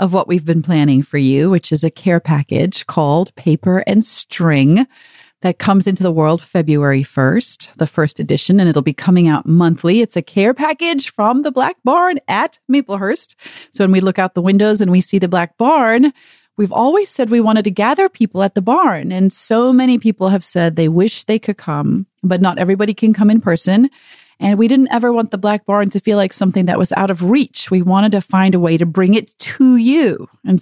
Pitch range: 170-225 Hz